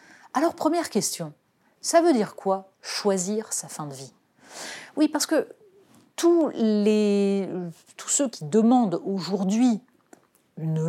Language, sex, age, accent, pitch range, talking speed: French, female, 40-59, French, 175-245 Hz, 125 wpm